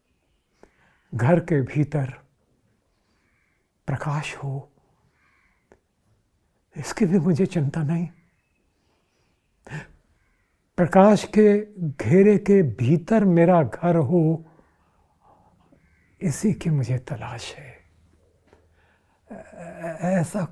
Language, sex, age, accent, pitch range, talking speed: Hindi, male, 60-79, native, 130-175 Hz, 70 wpm